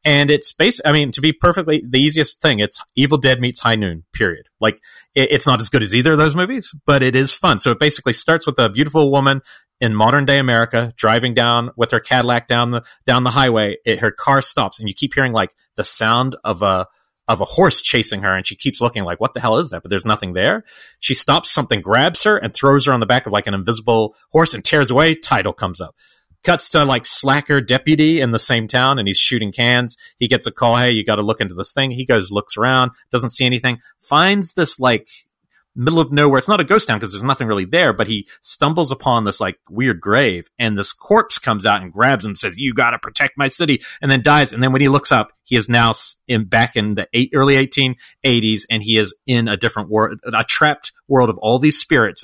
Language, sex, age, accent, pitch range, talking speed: English, male, 30-49, American, 110-135 Hz, 240 wpm